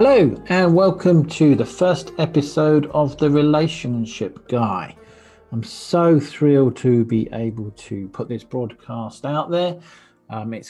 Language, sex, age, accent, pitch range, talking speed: English, male, 40-59, British, 115-145 Hz, 140 wpm